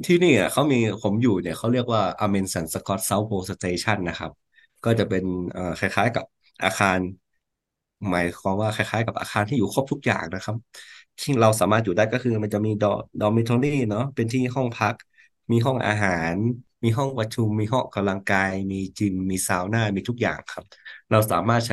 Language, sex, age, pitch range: Thai, male, 20-39, 95-115 Hz